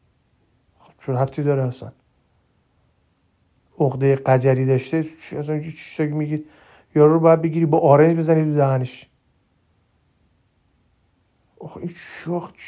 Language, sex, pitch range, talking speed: Persian, male, 125-180 Hz, 95 wpm